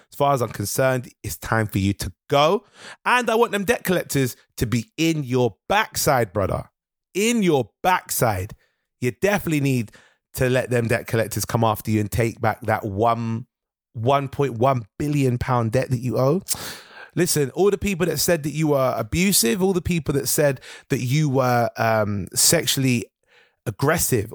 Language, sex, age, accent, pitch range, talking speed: English, male, 30-49, British, 115-155 Hz, 175 wpm